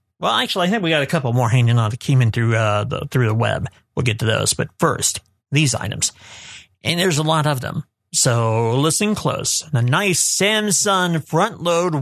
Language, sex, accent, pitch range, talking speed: English, male, American, 120-160 Hz, 210 wpm